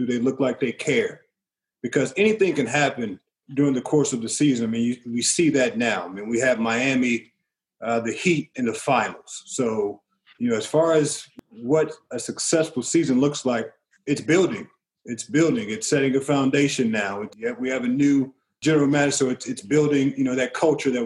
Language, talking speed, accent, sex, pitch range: English, 200 wpm, American, male, 125-150 Hz